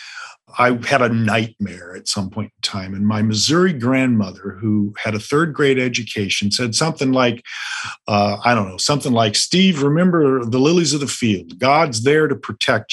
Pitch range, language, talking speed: 110-155 Hz, English, 175 wpm